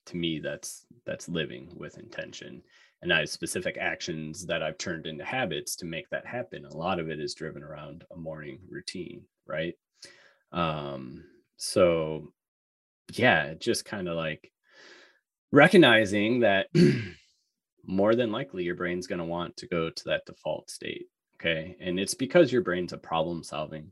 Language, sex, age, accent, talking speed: English, male, 30-49, American, 160 wpm